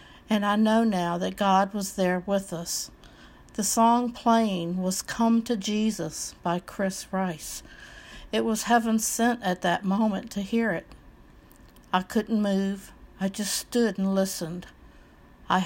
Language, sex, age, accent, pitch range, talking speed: English, female, 60-79, American, 190-230 Hz, 150 wpm